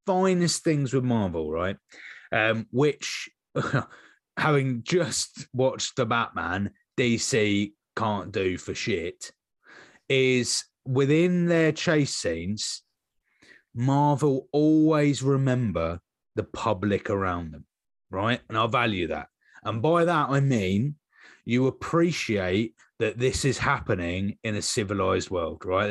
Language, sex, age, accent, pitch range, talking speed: English, male, 30-49, British, 100-145 Hz, 115 wpm